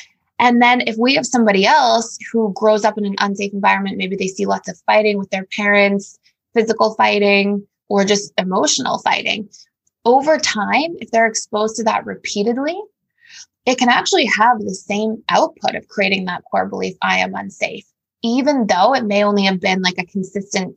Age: 20-39